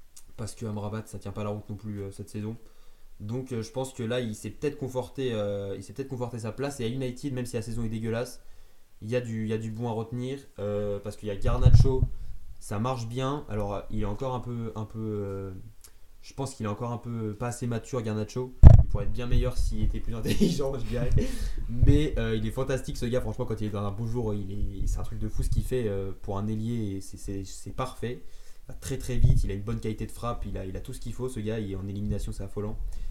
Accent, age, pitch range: French, 20-39, 105-120 Hz